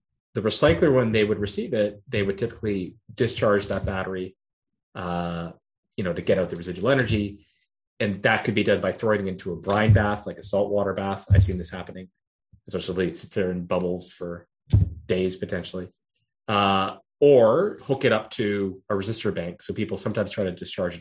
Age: 30-49